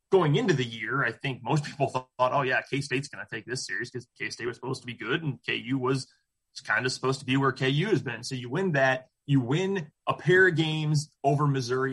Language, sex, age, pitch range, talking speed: English, male, 20-39, 125-150 Hz, 240 wpm